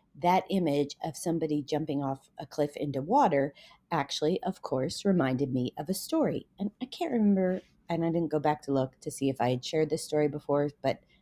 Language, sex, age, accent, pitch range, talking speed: English, female, 30-49, American, 145-180 Hz, 210 wpm